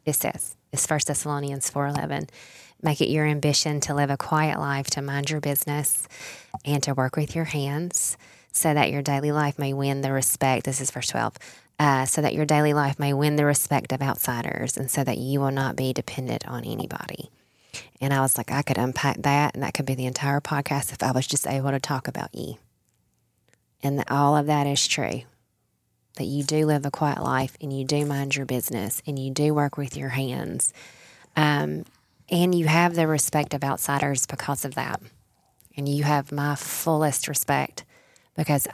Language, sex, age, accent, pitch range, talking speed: English, female, 20-39, American, 135-150 Hz, 200 wpm